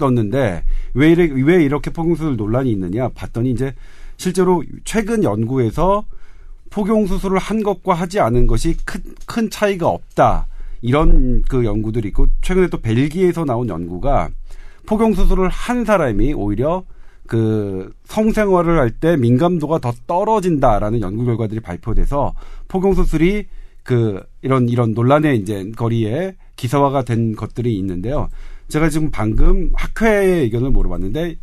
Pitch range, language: 115-180 Hz, Korean